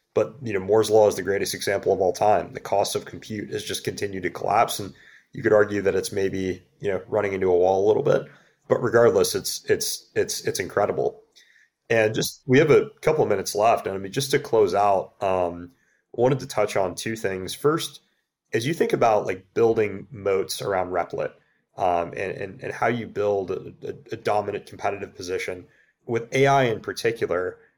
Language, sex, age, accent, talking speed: English, male, 30-49, American, 205 wpm